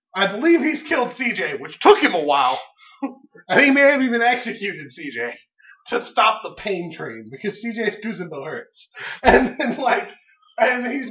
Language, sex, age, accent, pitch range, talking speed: English, male, 20-39, American, 165-245 Hz, 165 wpm